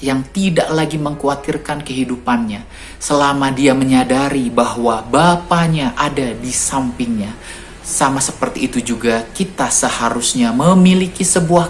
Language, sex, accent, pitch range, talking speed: Indonesian, male, native, 130-190 Hz, 110 wpm